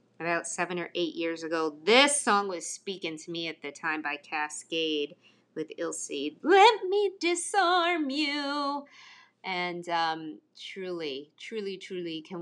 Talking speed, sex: 140 wpm, female